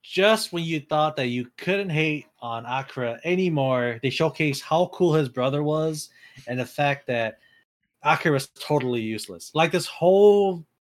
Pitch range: 115-150 Hz